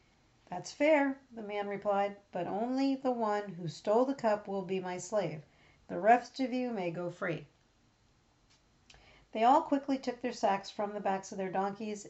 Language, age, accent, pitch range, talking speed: English, 50-69, American, 180-240 Hz, 180 wpm